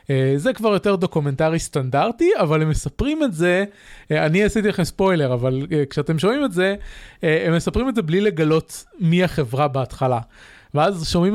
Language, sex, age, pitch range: Hebrew, male, 20-39, 140-195 Hz